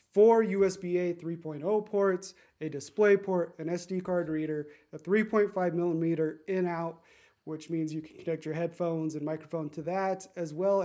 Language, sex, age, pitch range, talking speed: English, male, 30-49, 160-190 Hz, 155 wpm